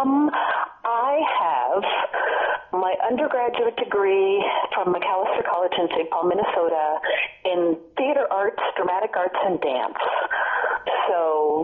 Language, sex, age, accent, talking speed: English, female, 40-59, American, 110 wpm